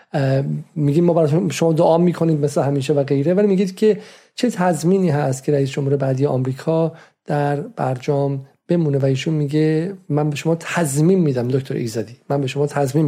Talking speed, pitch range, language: 170 wpm, 140-170 Hz, Persian